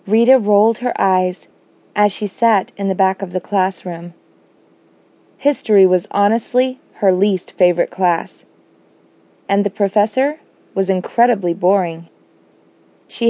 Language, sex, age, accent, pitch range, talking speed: English, female, 20-39, American, 175-210 Hz, 120 wpm